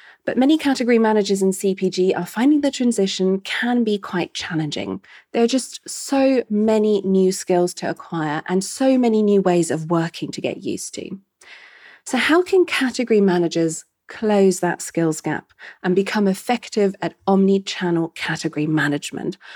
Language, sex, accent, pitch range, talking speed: English, female, British, 175-225 Hz, 155 wpm